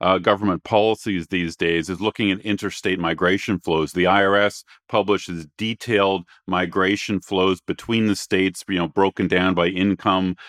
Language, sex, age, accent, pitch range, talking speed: English, male, 40-59, American, 90-105 Hz, 150 wpm